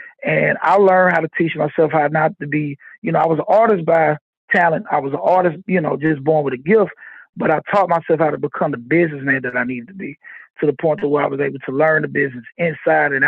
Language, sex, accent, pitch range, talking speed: English, male, American, 150-180 Hz, 265 wpm